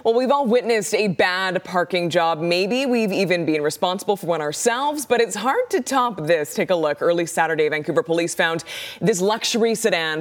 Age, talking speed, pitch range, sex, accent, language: 20-39, 195 wpm, 170-225 Hz, female, American, English